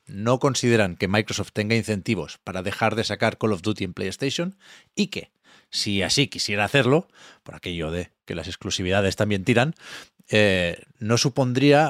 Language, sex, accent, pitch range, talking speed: Spanish, male, Spanish, 105-145 Hz, 160 wpm